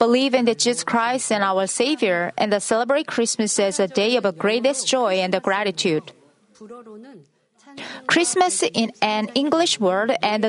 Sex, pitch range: female, 200-250 Hz